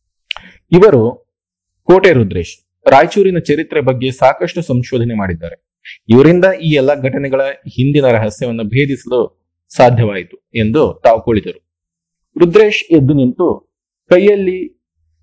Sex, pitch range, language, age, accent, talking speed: male, 115-160 Hz, Kannada, 30-49, native, 95 wpm